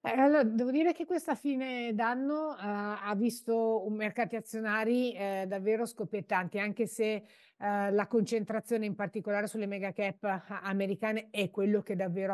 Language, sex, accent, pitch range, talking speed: Italian, female, native, 185-220 Hz, 145 wpm